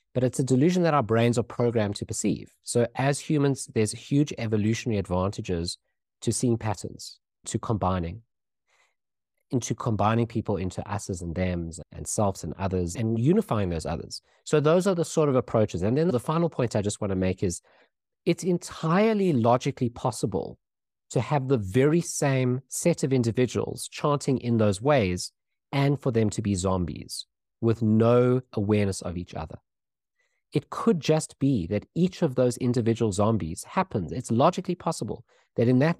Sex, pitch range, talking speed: male, 100-140 Hz, 170 wpm